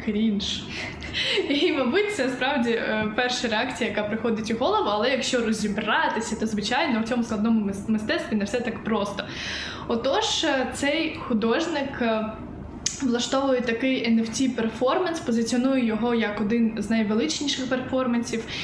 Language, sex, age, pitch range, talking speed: Ukrainian, female, 10-29, 225-260 Hz, 120 wpm